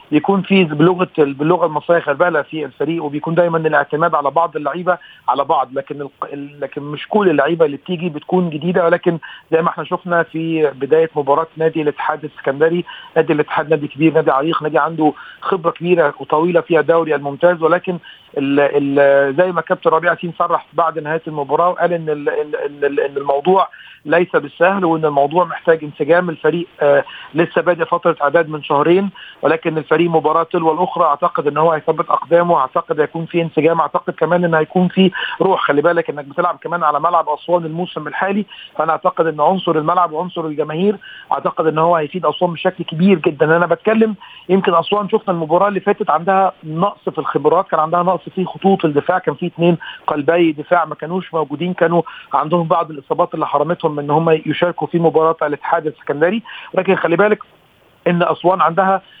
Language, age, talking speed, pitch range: Arabic, 40-59, 175 wpm, 155-180 Hz